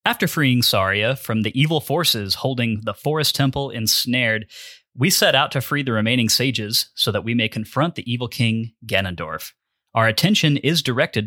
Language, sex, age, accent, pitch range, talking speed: English, male, 30-49, American, 105-140 Hz, 175 wpm